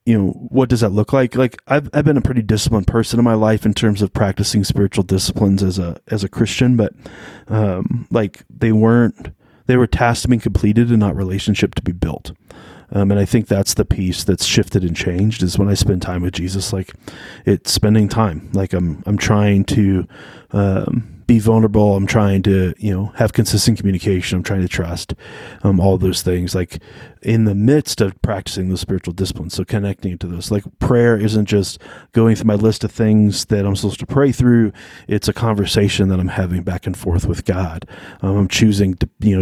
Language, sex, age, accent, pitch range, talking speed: English, male, 30-49, American, 95-115 Hz, 205 wpm